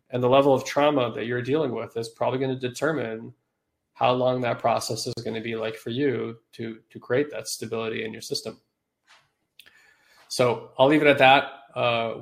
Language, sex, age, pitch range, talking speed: English, male, 20-39, 115-130 Hz, 195 wpm